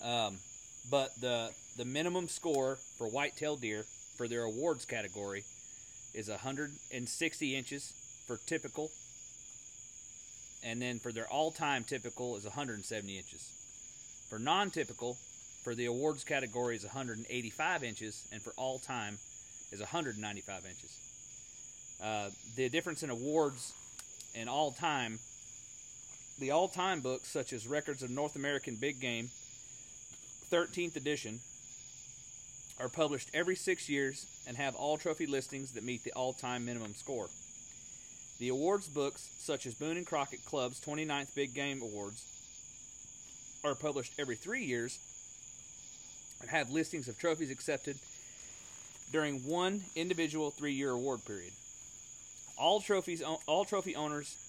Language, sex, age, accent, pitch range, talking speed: English, male, 30-49, American, 120-150 Hz, 125 wpm